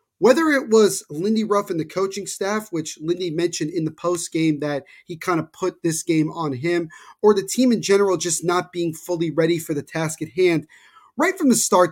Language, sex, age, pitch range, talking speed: English, male, 30-49, 165-195 Hz, 220 wpm